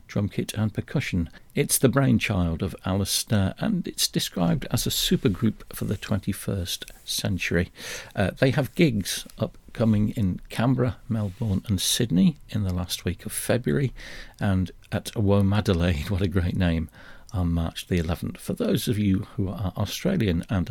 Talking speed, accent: 155 wpm, British